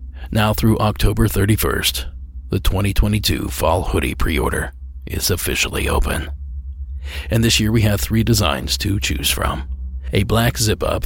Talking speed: 135 wpm